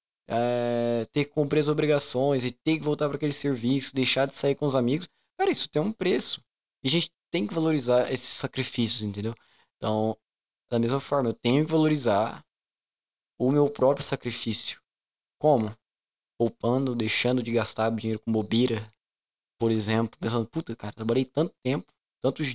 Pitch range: 120-155 Hz